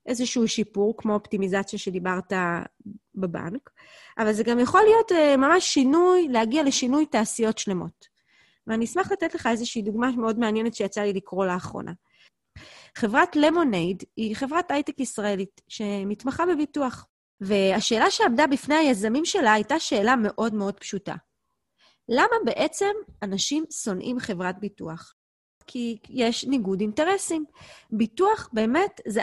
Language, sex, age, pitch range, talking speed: Hebrew, female, 30-49, 210-300 Hz, 125 wpm